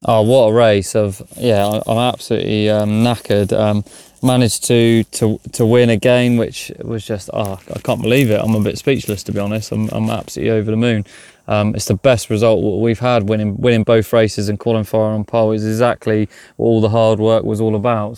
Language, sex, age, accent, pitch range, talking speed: English, male, 20-39, British, 110-115 Hz, 210 wpm